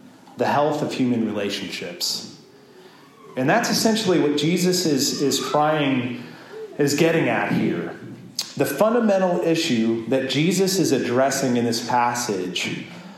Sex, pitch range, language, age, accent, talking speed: male, 125-160 Hz, English, 30-49, American, 125 wpm